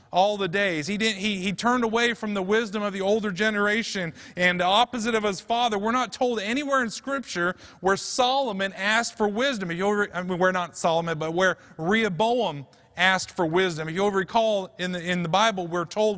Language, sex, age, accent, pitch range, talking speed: English, male, 30-49, American, 185-235 Hz, 205 wpm